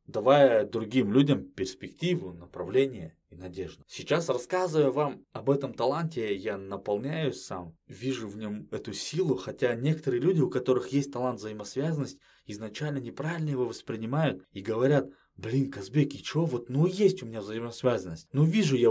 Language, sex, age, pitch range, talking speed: Russian, male, 20-39, 95-140 Hz, 150 wpm